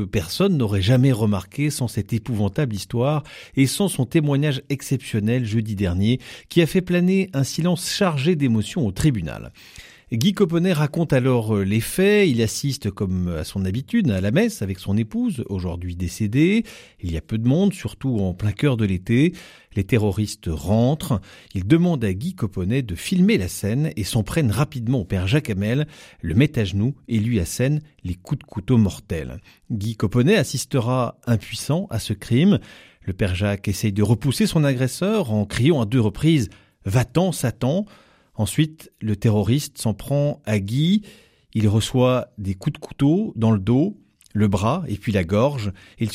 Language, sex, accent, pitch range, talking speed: French, male, French, 105-150 Hz, 175 wpm